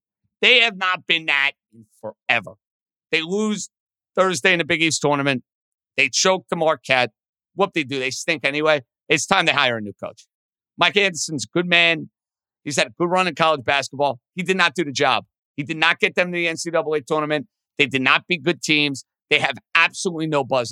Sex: male